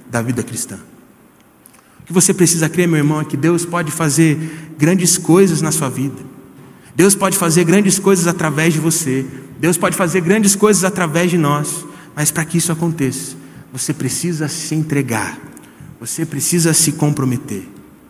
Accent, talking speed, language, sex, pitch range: Brazilian, 160 wpm, Portuguese, male, 150-190 Hz